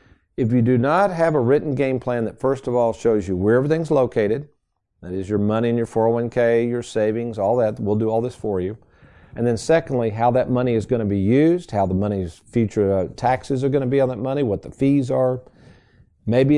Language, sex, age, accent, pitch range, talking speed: English, male, 50-69, American, 105-125 Hz, 230 wpm